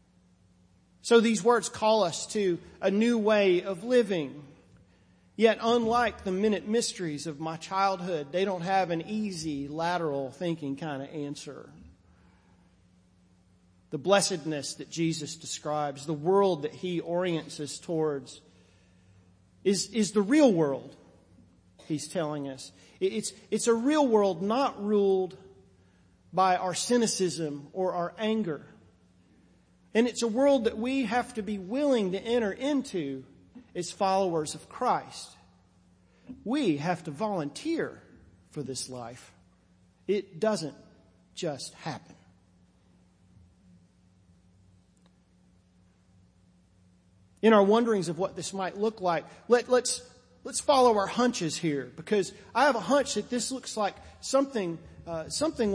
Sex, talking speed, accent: male, 130 wpm, American